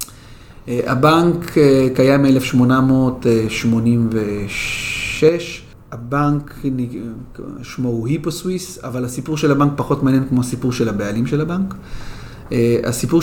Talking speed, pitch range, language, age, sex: 105 wpm, 115-145 Hz, Hebrew, 30-49, male